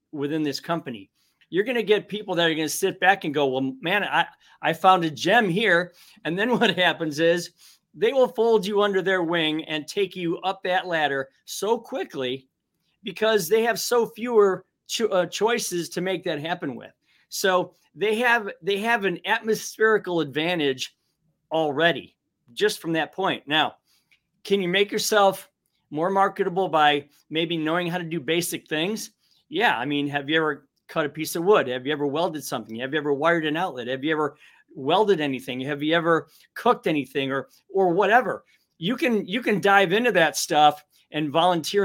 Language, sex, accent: English, male, American